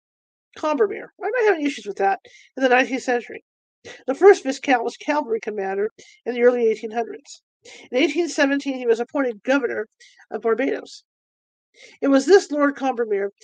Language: English